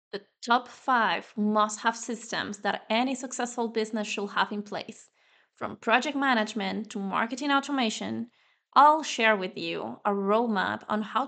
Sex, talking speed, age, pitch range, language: female, 145 wpm, 20-39, 210-245 Hz, English